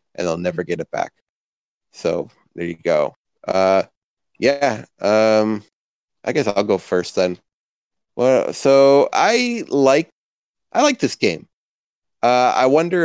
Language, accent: English, American